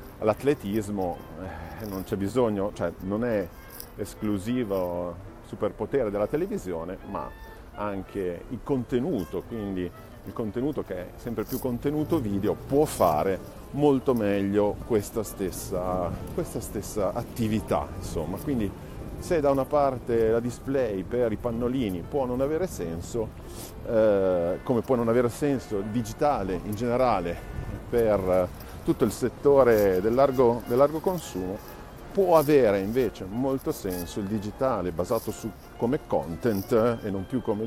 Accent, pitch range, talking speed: native, 100-140 Hz, 125 wpm